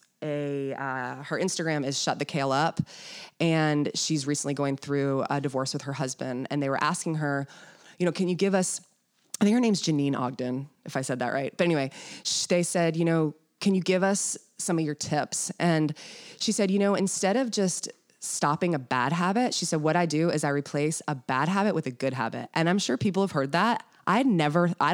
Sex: female